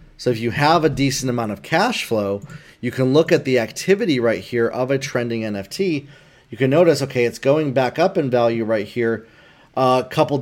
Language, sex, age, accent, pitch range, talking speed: English, male, 30-49, American, 120-150 Hz, 215 wpm